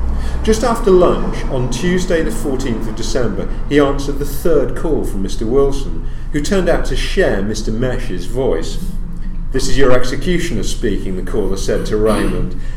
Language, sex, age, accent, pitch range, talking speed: English, male, 50-69, British, 115-150 Hz, 165 wpm